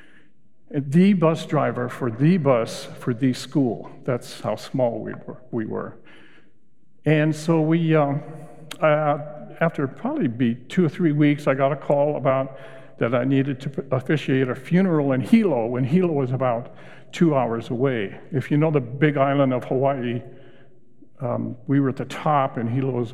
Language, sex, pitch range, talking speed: English, male, 130-155 Hz, 170 wpm